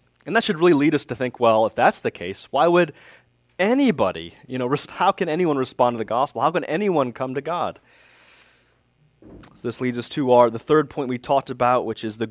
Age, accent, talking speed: 30-49, American, 225 wpm